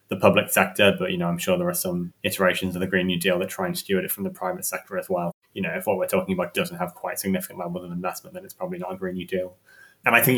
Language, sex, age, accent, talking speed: English, male, 20-39, British, 310 wpm